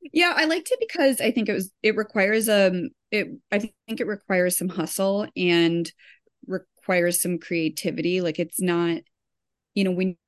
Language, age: English, 30-49